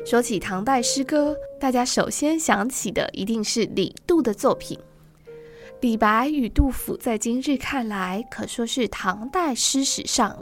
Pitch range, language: 210-275 Hz, Chinese